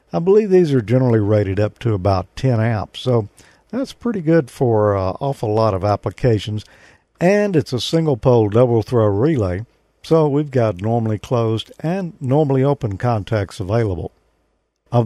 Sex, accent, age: male, American, 50-69